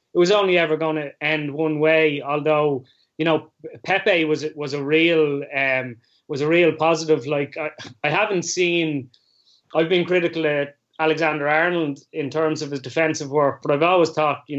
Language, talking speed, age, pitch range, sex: English, 175 wpm, 20-39, 145-160 Hz, male